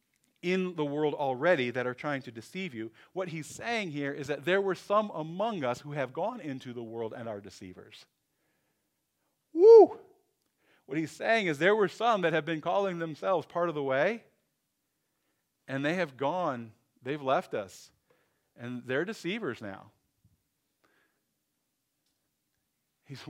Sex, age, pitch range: male, 40-59, 125-175 Hz